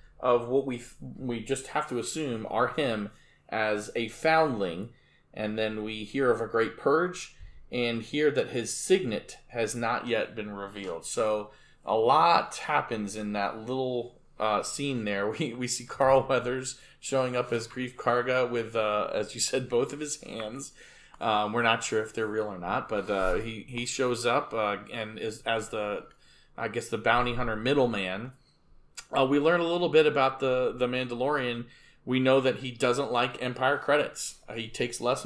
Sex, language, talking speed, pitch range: male, English, 180 wpm, 115-135 Hz